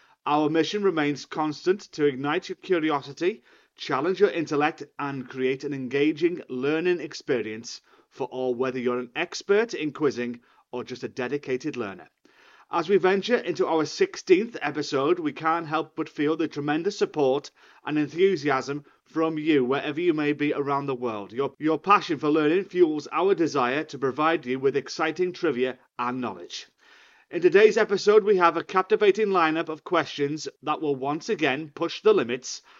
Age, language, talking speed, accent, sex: 30-49, English, 165 wpm, British, male